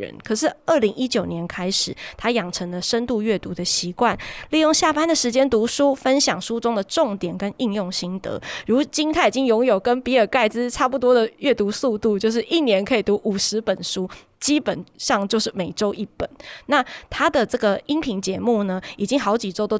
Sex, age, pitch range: female, 20-39, 200-260 Hz